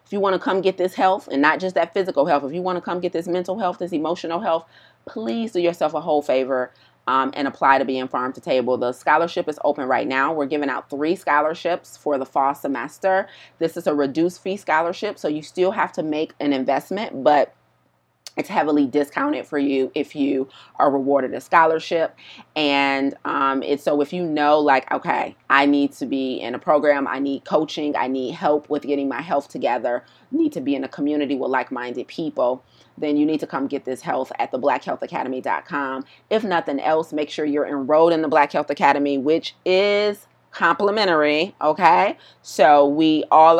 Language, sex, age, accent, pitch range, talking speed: English, female, 30-49, American, 140-165 Hz, 200 wpm